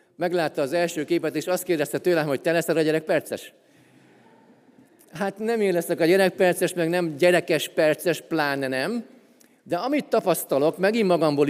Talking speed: 155 wpm